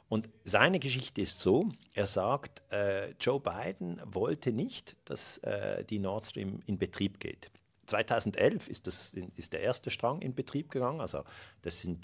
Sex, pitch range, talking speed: male, 95-120 Hz, 165 wpm